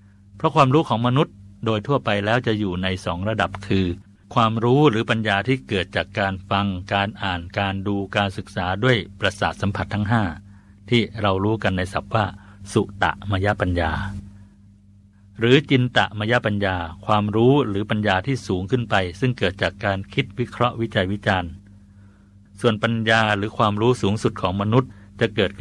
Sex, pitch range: male, 100-115 Hz